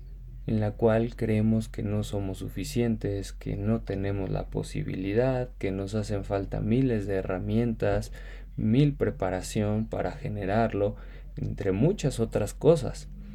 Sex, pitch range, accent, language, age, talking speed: male, 100-130 Hz, Mexican, Spanish, 20-39, 125 wpm